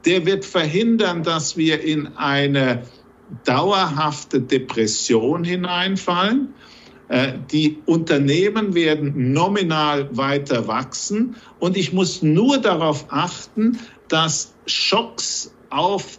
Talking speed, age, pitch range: 95 wpm, 50-69, 135-185 Hz